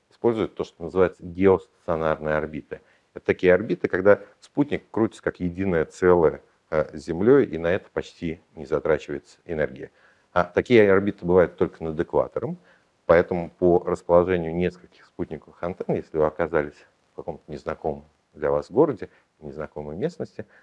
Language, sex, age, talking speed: Russian, male, 50-69, 135 wpm